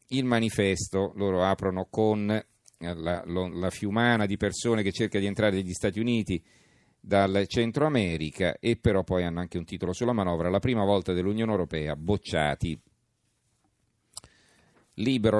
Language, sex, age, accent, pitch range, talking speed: Italian, male, 40-59, native, 90-110 Hz, 145 wpm